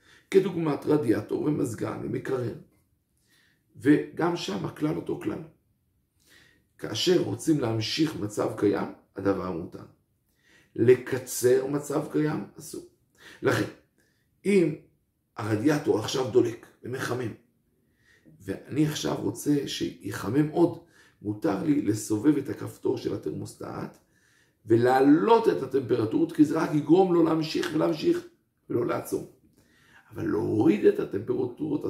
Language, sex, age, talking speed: Hebrew, male, 50-69, 100 wpm